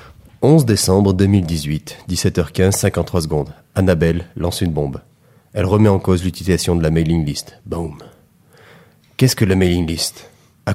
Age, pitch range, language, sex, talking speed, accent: 30-49, 100-140 Hz, French, male, 145 wpm, French